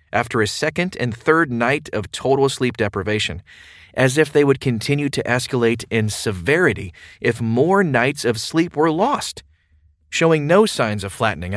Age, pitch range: 40-59, 105-140 Hz